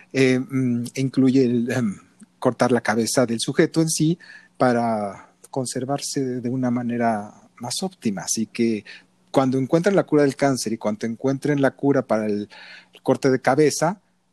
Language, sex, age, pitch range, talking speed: Spanish, male, 40-59, 115-145 Hz, 155 wpm